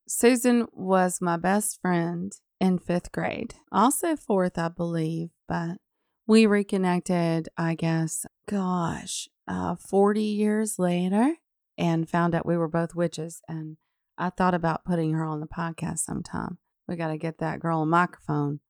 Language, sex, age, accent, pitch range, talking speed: English, female, 30-49, American, 165-205 Hz, 150 wpm